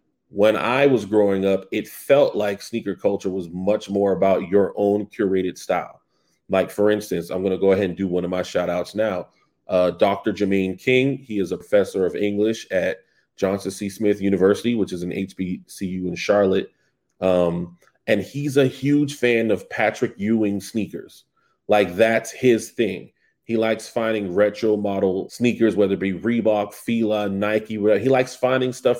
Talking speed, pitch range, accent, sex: 175 wpm, 95-120 Hz, American, male